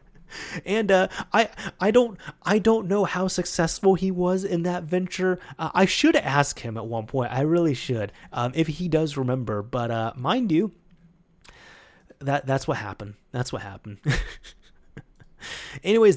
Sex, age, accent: male, 30-49, American